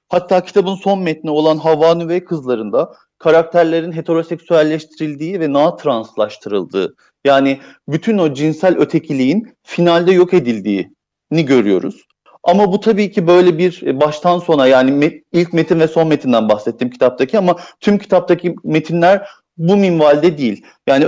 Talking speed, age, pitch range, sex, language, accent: 130 wpm, 40-59, 150-185 Hz, male, Turkish, native